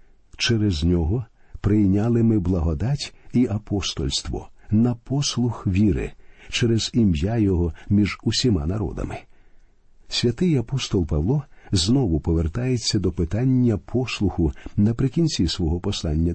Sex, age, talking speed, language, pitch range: male, 50-69, 100 wpm, Ukrainian, 95-120 Hz